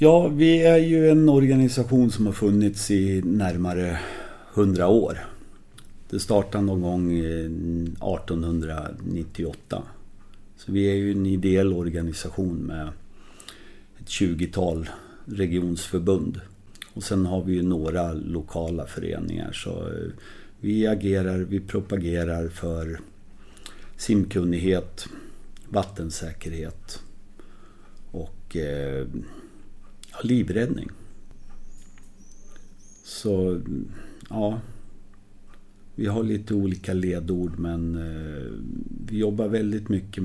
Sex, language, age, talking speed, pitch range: male, Swedish, 50-69, 90 wpm, 85-100 Hz